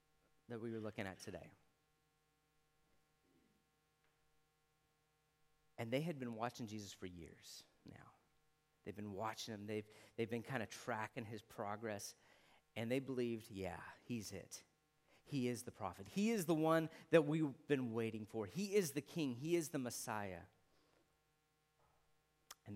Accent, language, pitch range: American, English, 125-195 Hz